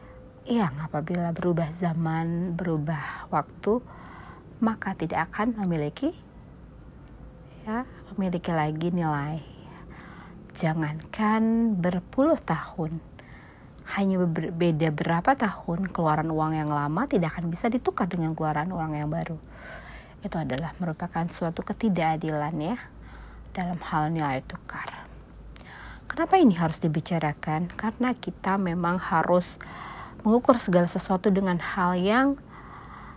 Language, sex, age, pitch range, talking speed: Indonesian, female, 30-49, 160-195 Hz, 105 wpm